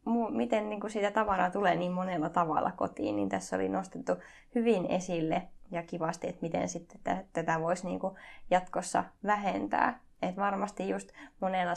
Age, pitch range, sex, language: 20-39, 170-210 Hz, female, Finnish